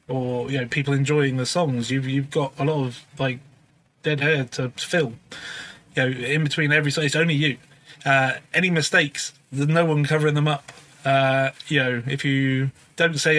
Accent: British